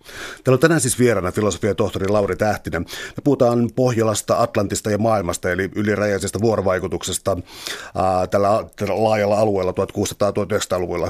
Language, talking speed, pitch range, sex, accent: Finnish, 125 wpm, 100-115 Hz, male, native